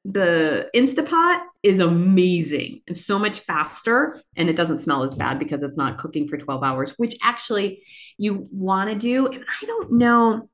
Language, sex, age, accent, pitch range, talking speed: English, female, 30-49, American, 155-220 Hz, 175 wpm